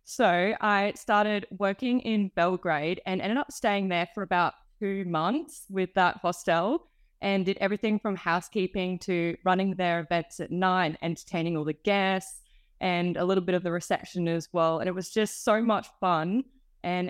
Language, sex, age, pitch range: English, female, 20-39, 170-205 Hz